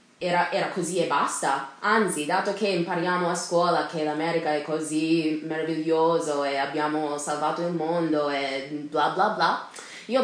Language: Italian